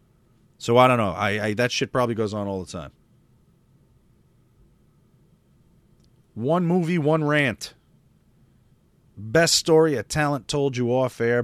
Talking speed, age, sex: 135 wpm, 40-59, male